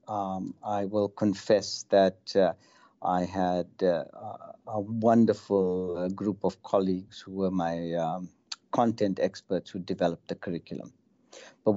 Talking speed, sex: 135 wpm, male